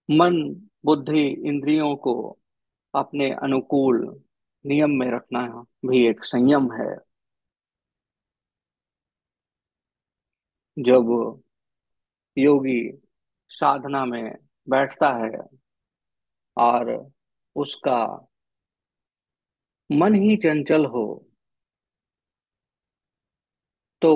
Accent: native